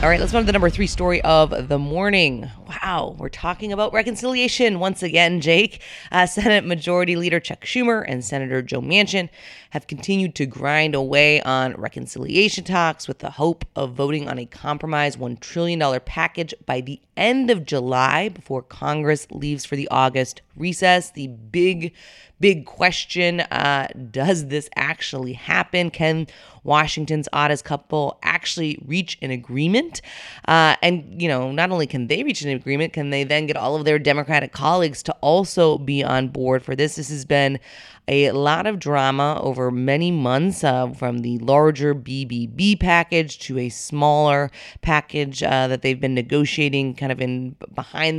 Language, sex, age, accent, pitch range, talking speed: English, female, 30-49, American, 135-170 Hz, 165 wpm